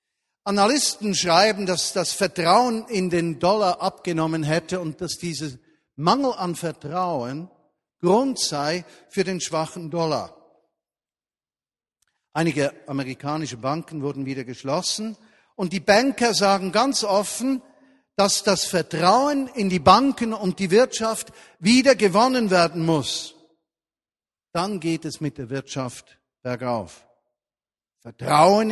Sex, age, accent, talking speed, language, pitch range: male, 50-69, German, 115 wpm, German, 165-230 Hz